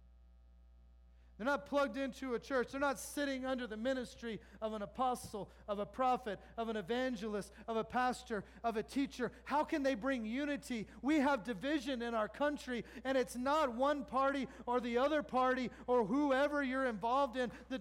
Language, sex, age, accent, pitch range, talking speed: English, male, 40-59, American, 195-275 Hz, 180 wpm